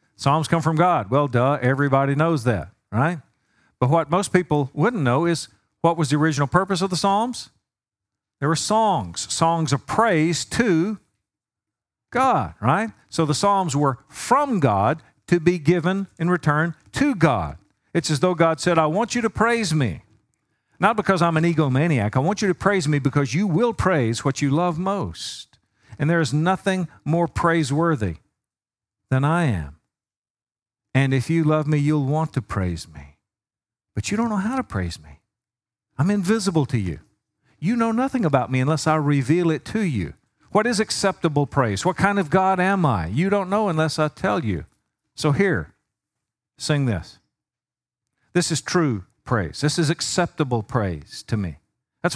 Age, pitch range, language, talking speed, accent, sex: 50-69, 120-175 Hz, English, 175 wpm, American, male